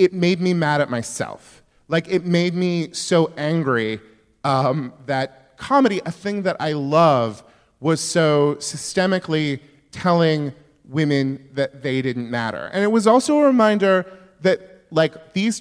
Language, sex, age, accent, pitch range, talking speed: English, male, 30-49, American, 130-175 Hz, 145 wpm